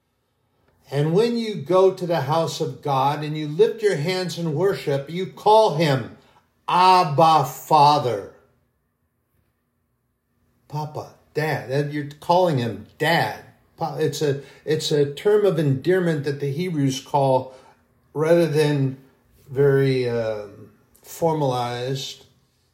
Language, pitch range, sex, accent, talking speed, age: English, 130-165 Hz, male, American, 115 wpm, 60-79